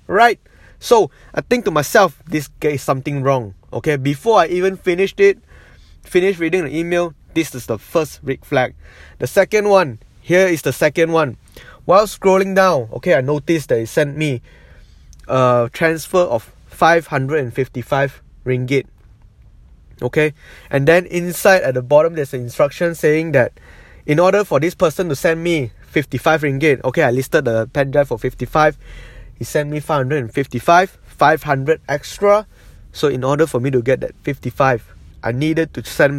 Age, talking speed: 20-39, 160 wpm